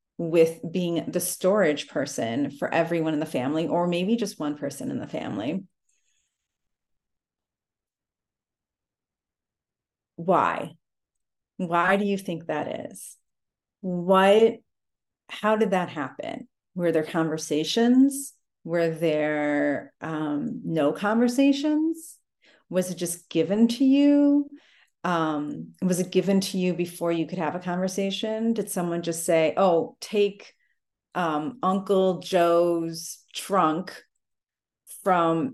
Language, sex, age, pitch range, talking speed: English, female, 40-59, 160-205 Hz, 115 wpm